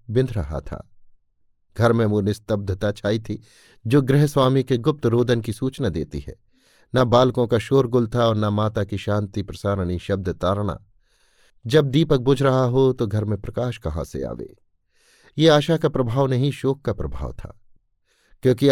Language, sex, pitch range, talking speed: Hindi, male, 100-135 Hz, 170 wpm